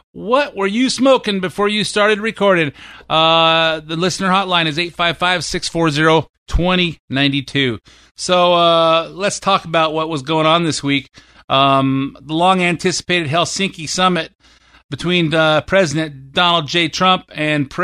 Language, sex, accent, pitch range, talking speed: English, male, American, 140-180 Hz, 125 wpm